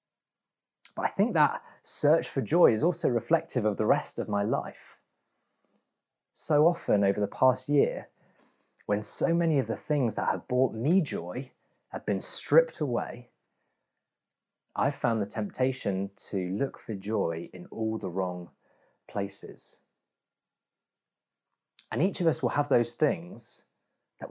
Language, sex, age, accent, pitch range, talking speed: English, male, 30-49, British, 100-135 Hz, 145 wpm